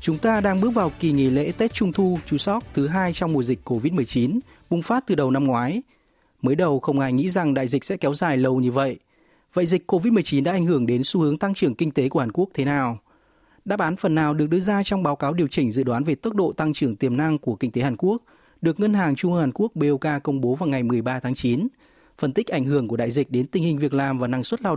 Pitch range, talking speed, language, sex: 130-175 Hz, 275 wpm, Vietnamese, male